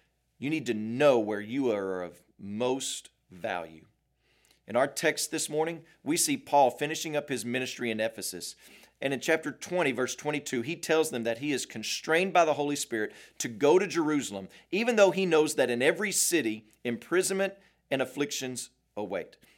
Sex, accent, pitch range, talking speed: male, American, 115-160 Hz, 175 wpm